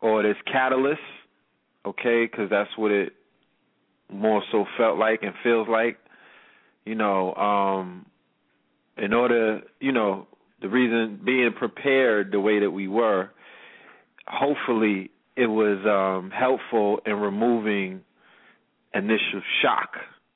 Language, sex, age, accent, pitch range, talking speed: English, male, 30-49, American, 95-110 Hz, 120 wpm